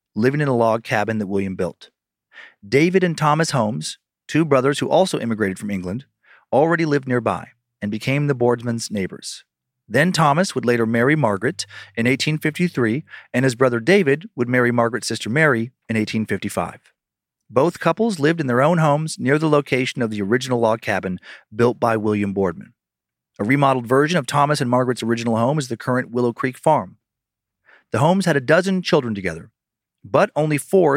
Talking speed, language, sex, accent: 175 wpm, English, male, American